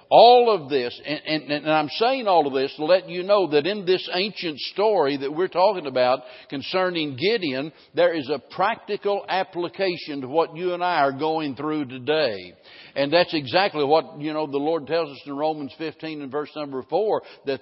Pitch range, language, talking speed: 145-185 Hz, English, 200 wpm